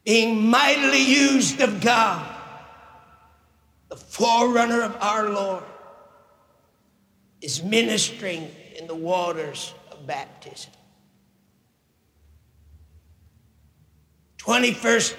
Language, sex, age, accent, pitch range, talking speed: English, male, 50-69, American, 185-265 Hz, 70 wpm